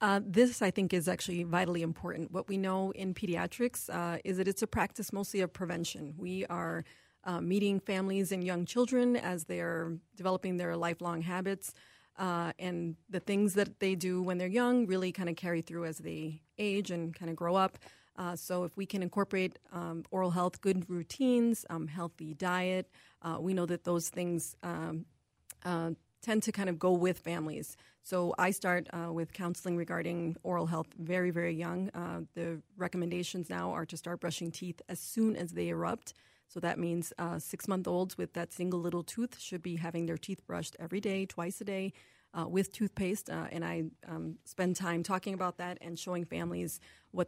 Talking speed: 190 wpm